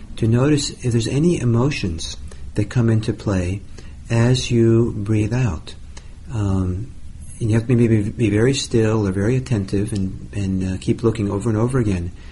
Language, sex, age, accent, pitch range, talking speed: English, male, 50-69, American, 95-115 Hz, 170 wpm